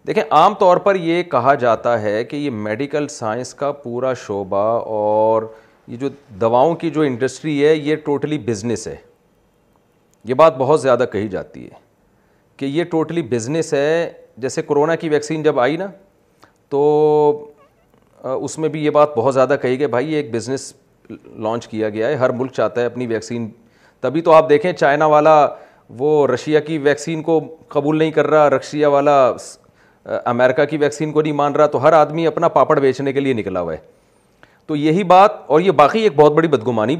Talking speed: 190 wpm